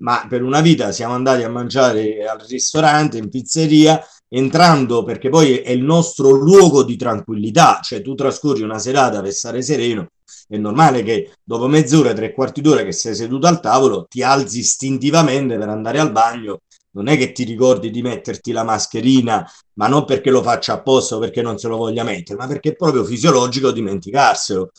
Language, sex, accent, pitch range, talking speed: Italian, male, native, 110-135 Hz, 185 wpm